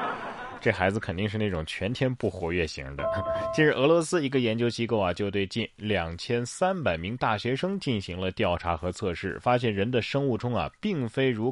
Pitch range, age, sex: 90-135 Hz, 20-39, male